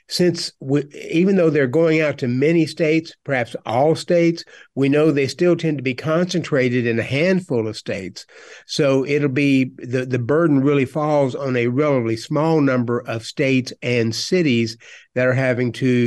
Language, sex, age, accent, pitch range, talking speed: English, male, 50-69, American, 130-165 Hz, 175 wpm